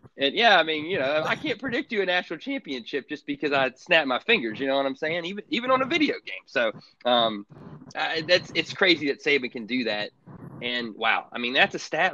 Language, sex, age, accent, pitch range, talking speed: English, male, 30-49, American, 130-165 Hz, 240 wpm